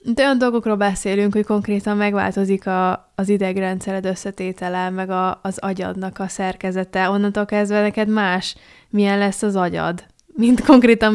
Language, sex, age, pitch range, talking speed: Hungarian, female, 10-29, 190-210 Hz, 145 wpm